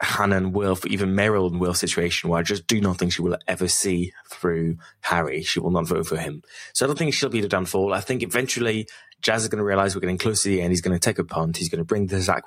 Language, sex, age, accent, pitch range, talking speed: English, male, 20-39, British, 90-105 Hz, 295 wpm